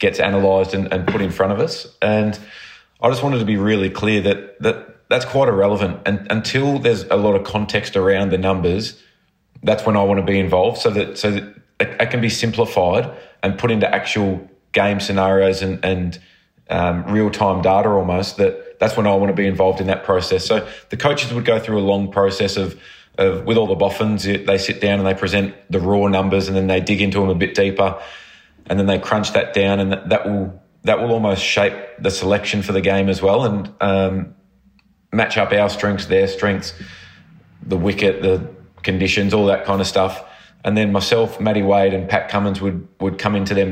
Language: English